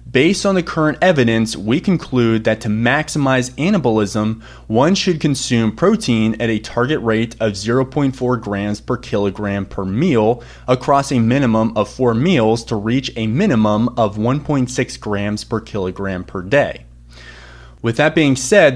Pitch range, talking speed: 105-130 Hz, 150 wpm